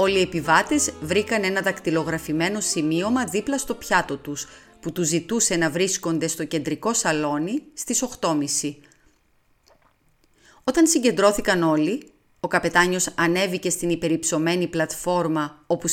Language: Greek